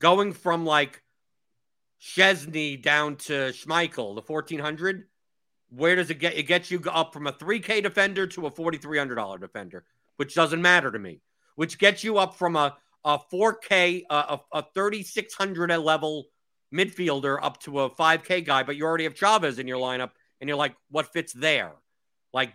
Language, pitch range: English, 140-180 Hz